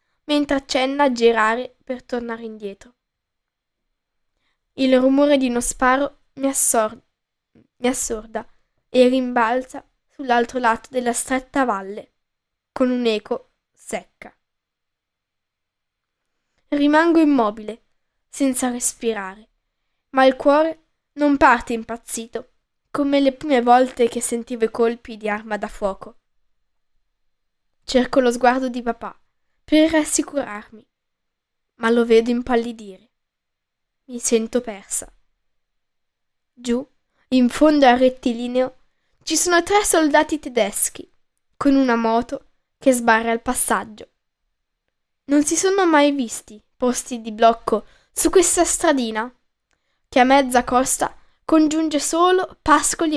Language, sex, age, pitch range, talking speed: Italian, female, 10-29, 230-285 Hz, 110 wpm